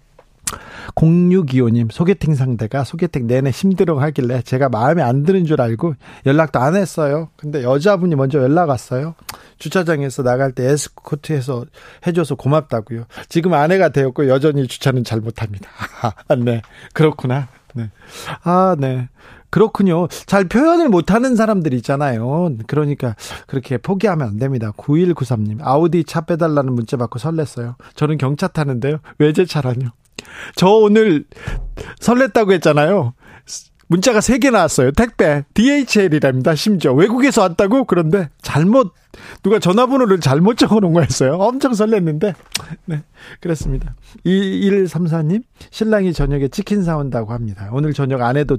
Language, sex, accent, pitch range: Korean, male, native, 135-190 Hz